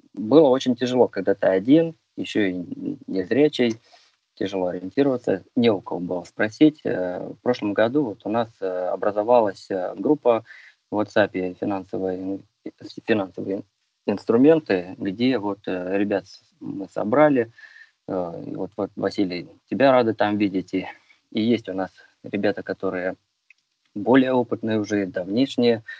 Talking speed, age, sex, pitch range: 115 wpm, 20-39, male, 95-125 Hz